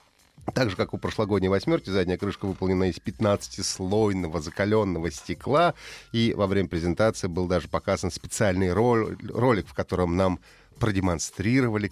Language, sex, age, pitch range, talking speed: Russian, male, 30-49, 95-130 Hz, 130 wpm